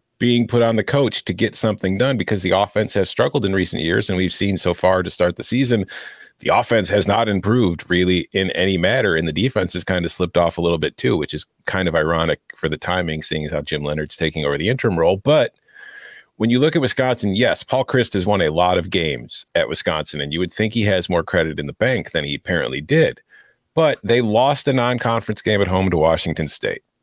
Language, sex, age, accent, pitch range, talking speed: English, male, 40-59, American, 90-125 Hz, 240 wpm